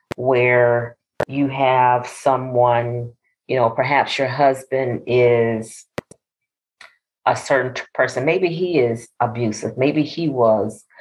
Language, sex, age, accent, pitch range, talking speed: English, female, 40-59, American, 125-160 Hz, 115 wpm